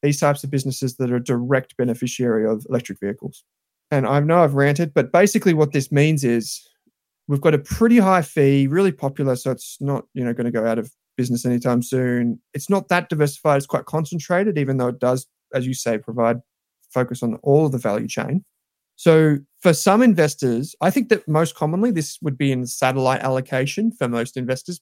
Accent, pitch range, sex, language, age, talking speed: Australian, 125-160 Hz, male, English, 20-39, 200 wpm